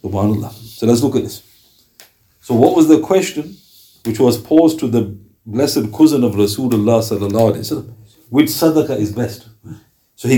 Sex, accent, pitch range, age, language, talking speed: male, Indian, 110-165 Hz, 60-79, English, 150 wpm